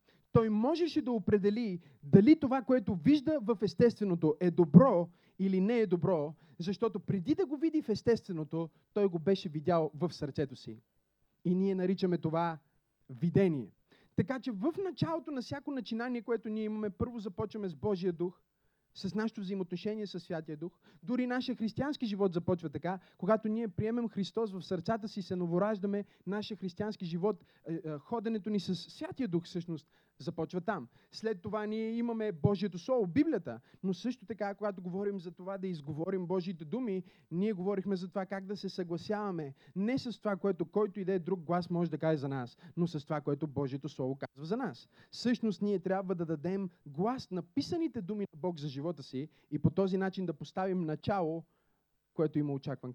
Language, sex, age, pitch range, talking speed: Bulgarian, male, 30-49, 165-215 Hz, 175 wpm